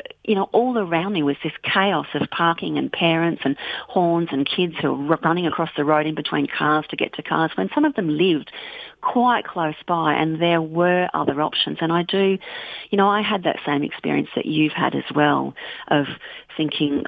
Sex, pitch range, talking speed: female, 155-215 Hz, 205 wpm